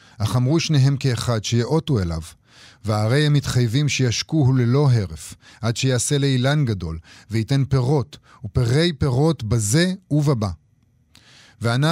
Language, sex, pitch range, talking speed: Hebrew, male, 105-145 Hz, 115 wpm